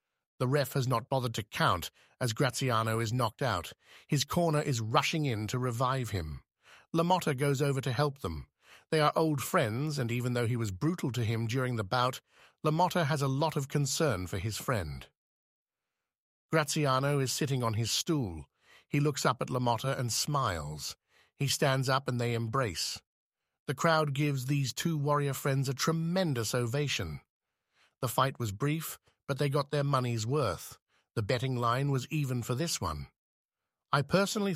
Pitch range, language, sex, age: 115-150 Hz, English, male, 50-69